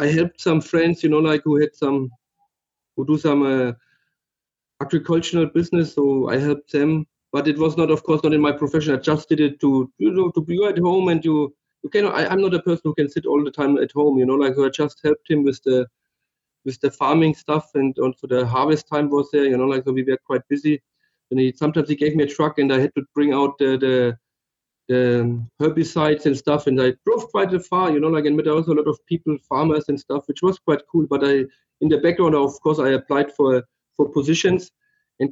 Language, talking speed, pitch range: English, 245 wpm, 140-160 Hz